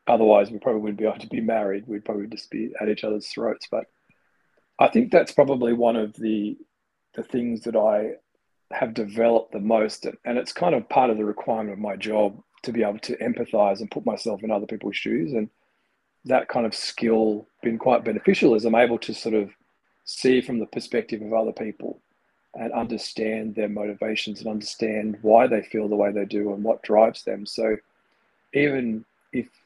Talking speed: 195 wpm